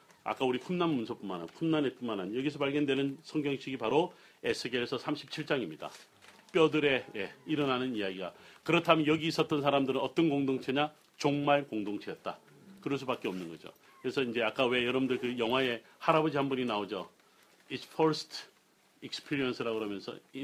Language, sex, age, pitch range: Korean, male, 40-59, 120-150 Hz